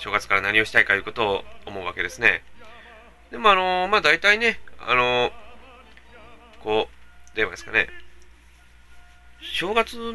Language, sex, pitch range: Japanese, male, 95-155 Hz